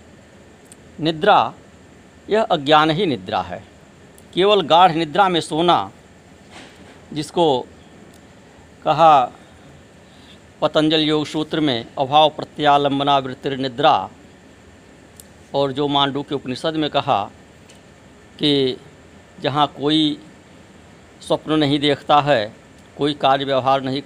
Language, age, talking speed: Hindi, 60-79, 95 wpm